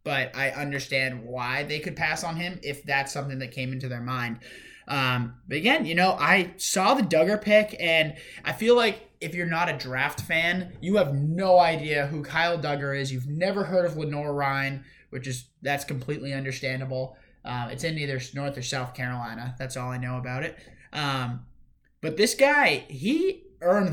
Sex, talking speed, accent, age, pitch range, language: male, 190 wpm, American, 20-39, 135-175 Hz, English